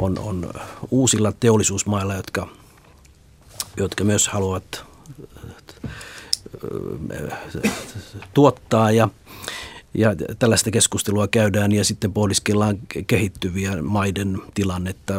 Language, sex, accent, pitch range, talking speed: Finnish, male, native, 90-110 Hz, 80 wpm